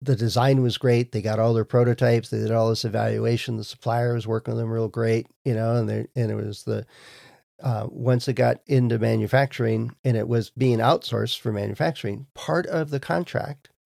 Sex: male